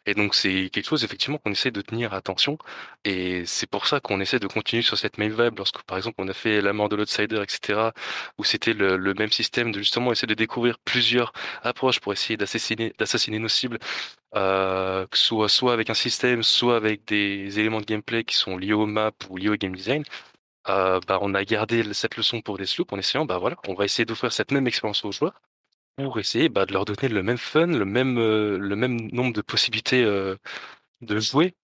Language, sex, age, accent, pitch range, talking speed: French, male, 20-39, French, 100-120 Hz, 225 wpm